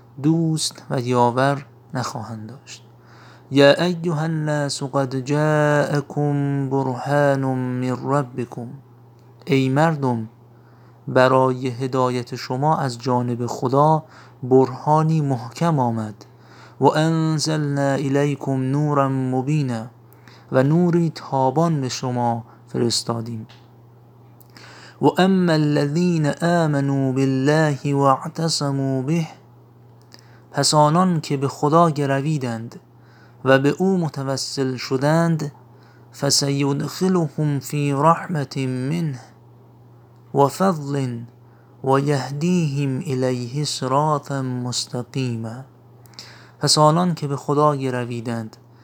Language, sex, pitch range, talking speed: Persian, male, 120-145 Hz, 85 wpm